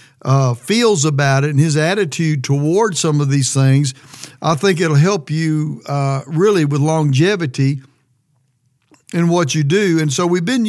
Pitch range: 140-175 Hz